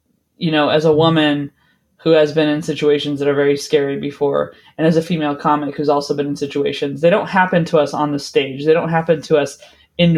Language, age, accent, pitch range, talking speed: English, 20-39, American, 145-170 Hz, 230 wpm